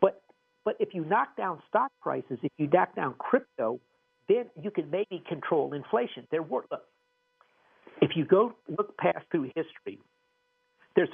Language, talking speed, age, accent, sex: English, 155 wpm, 50-69, American, male